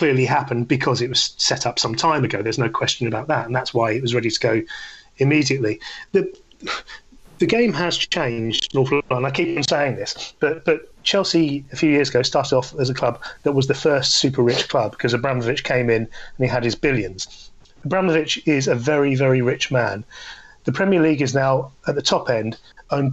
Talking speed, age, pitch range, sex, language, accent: 210 wpm, 30-49, 130-165 Hz, male, English, British